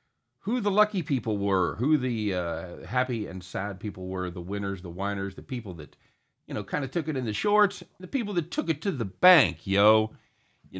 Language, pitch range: English, 95-130 Hz